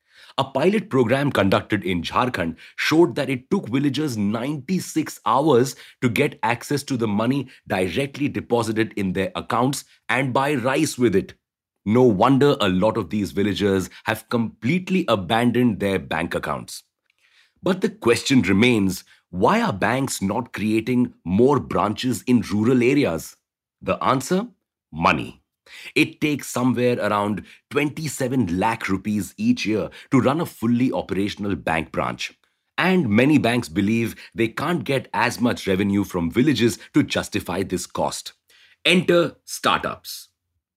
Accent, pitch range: Indian, 100-140 Hz